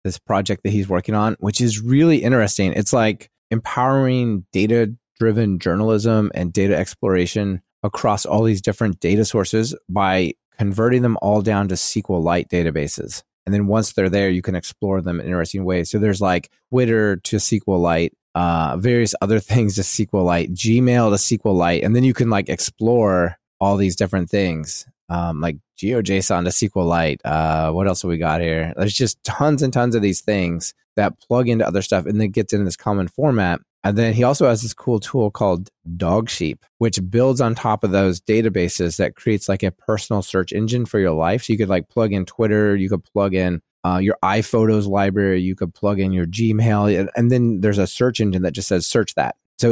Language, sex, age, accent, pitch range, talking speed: English, male, 20-39, American, 95-115 Hz, 195 wpm